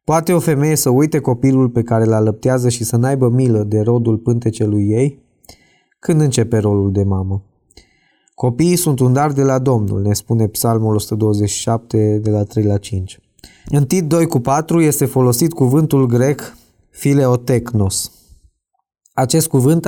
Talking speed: 150 wpm